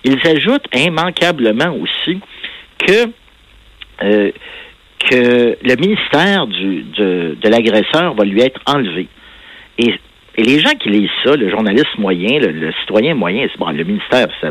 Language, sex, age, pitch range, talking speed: French, male, 60-79, 105-155 Hz, 150 wpm